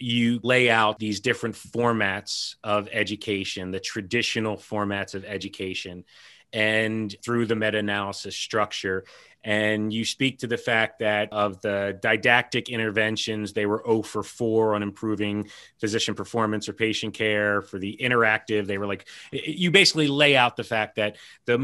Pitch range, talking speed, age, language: 105-120 Hz, 155 wpm, 30-49, English